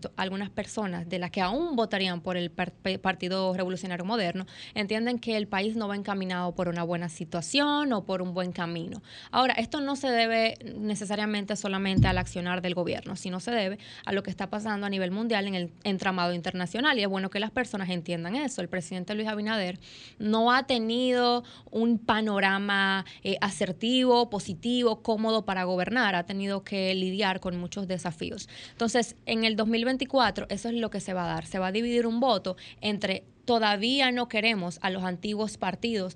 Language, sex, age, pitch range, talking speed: Spanish, female, 20-39, 185-225 Hz, 185 wpm